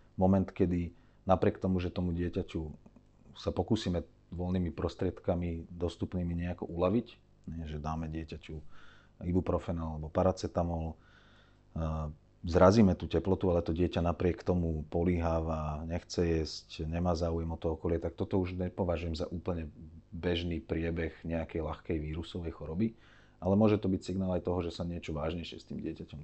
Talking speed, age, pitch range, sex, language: 140 wpm, 40-59, 80-95 Hz, male, Slovak